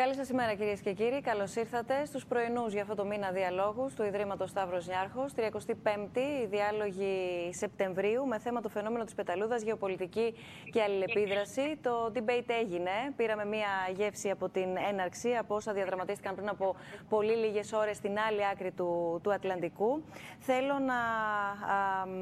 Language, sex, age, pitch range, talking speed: Greek, female, 20-39, 200-235 Hz, 150 wpm